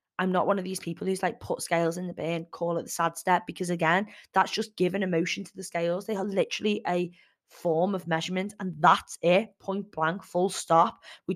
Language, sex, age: English, female, 20-39